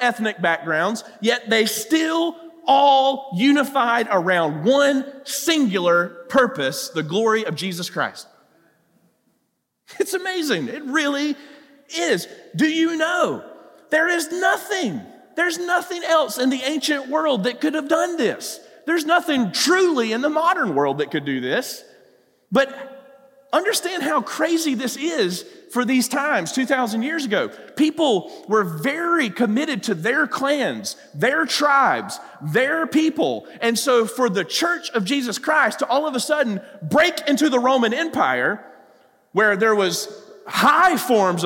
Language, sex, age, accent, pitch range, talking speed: English, male, 40-59, American, 220-315 Hz, 140 wpm